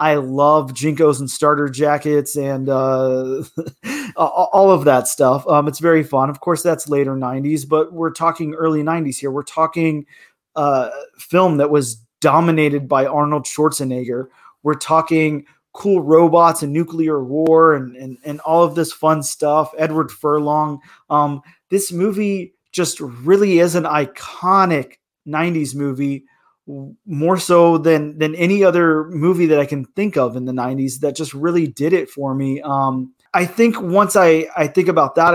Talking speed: 160 wpm